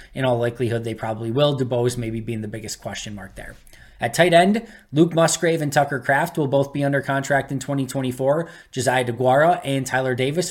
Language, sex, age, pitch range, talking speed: English, male, 20-39, 120-140 Hz, 195 wpm